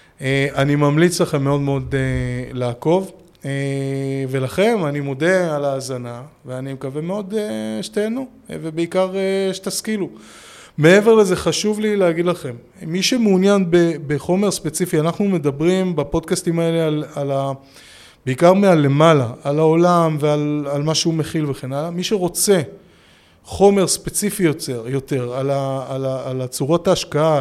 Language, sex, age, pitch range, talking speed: Hebrew, male, 20-39, 135-175 Hz, 125 wpm